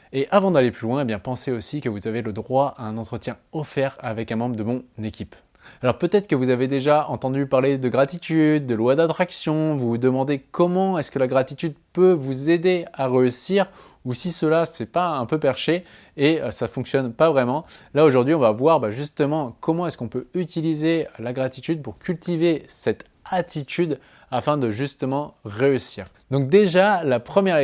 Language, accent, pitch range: French, French, 125-155 Hz